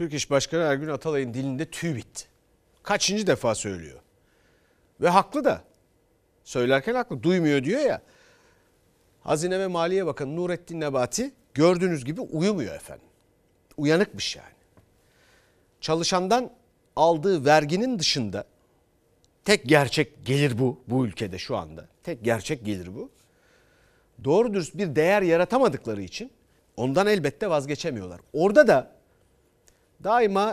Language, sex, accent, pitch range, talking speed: Turkish, male, native, 130-205 Hz, 115 wpm